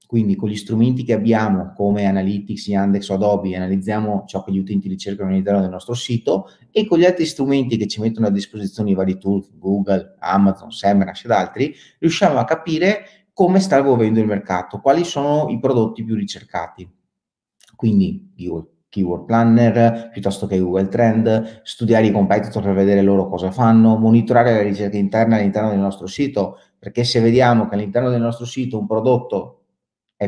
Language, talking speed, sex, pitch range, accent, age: Italian, 170 wpm, male, 100-120 Hz, native, 30-49